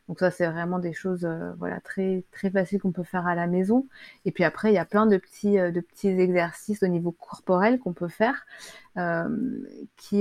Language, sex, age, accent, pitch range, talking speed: French, female, 30-49, French, 175-210 Hz, 205 wpm